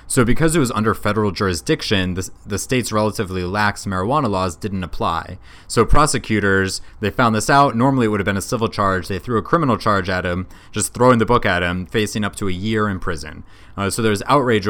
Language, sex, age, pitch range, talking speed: English, male, 20-39, 90-110 Hz, 220 wpm